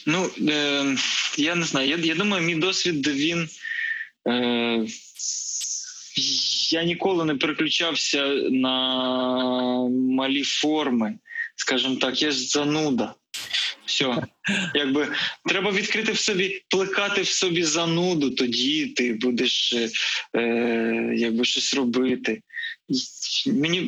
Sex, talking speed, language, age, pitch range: male, 105 wpm, Ukrainian, 20-39, 130-205 Hz